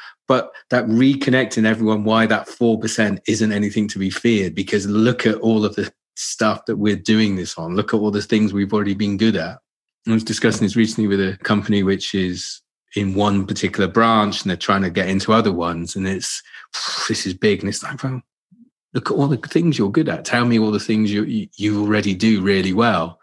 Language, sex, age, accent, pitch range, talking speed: English, male, 30-49, British, 95-110 Hz, 215 wpm